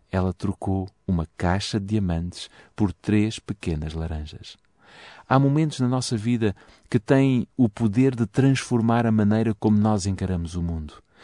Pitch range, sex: 100-125 Hz, male